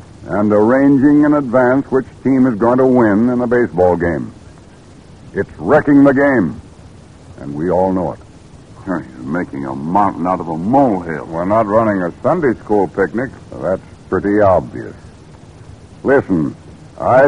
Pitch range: 100-140 Hz